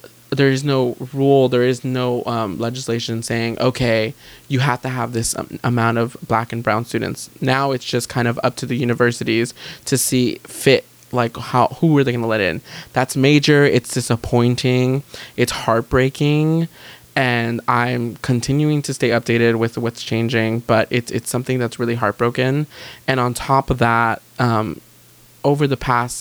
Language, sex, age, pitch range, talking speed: English, male, 20-39, 115-130 Hz, 170 wpm